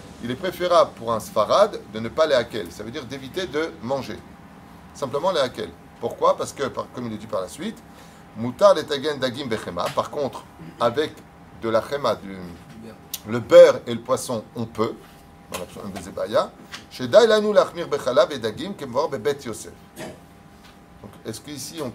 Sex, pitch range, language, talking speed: male, 100-145 Hz, French, 135 wpm